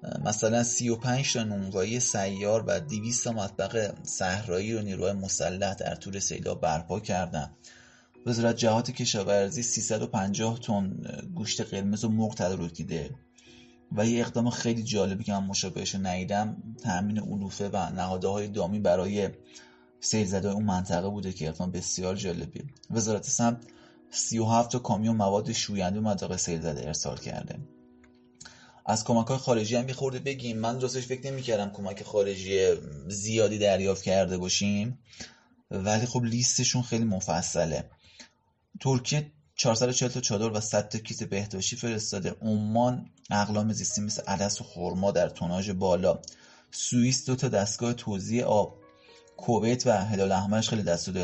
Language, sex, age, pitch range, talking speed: Persian, male, 30-49, 95-120 Hz, 140 wpm